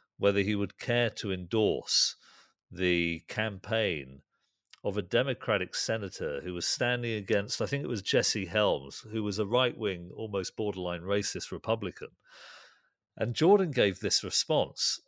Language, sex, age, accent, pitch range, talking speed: English, male, 40-59, British, 100-135 Hz, 140 wpm